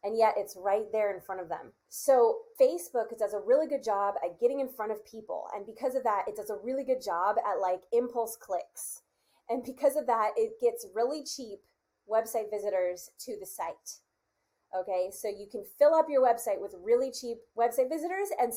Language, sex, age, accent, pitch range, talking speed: English, female, 20-39, American, 195-260 Hz, 205 wpm